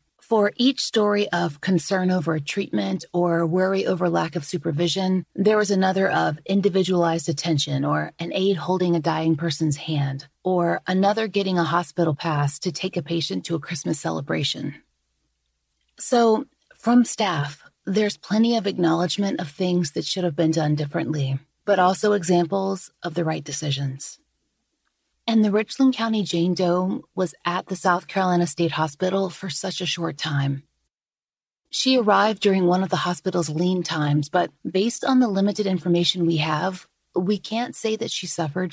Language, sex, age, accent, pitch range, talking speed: English, female, 30-49, American, 160-200 Hz, 165 wpm